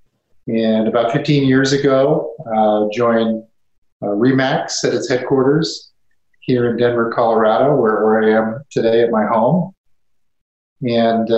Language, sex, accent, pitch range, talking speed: English, male, American, 110-130 Hz, 130 wpm